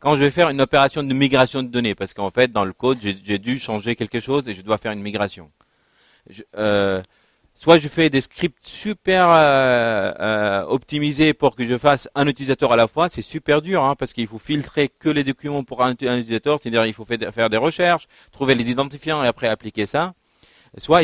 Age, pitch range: 40-59, 120-150 Hz